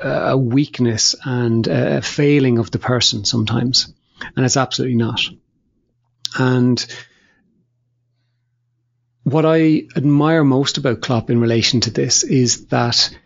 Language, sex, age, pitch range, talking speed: English, male, 40-59, 115-135 Hz, 120 wpm